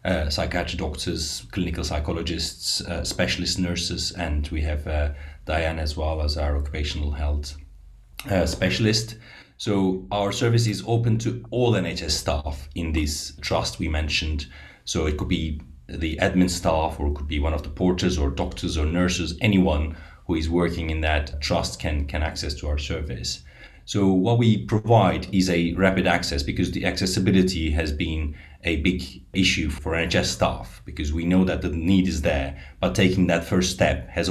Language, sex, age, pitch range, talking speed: English, male, 30-49, 75-95 Hz, 175 wpm